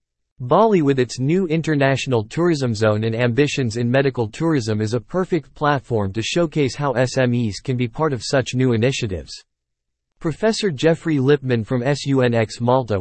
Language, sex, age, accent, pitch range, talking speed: English, male, 50-69, American, 115-150 Hz, 150 wpm